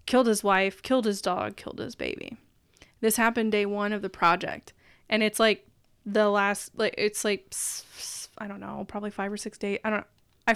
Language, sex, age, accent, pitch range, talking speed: English, female, 20-39, American, 200-230 Hz, 200 wpm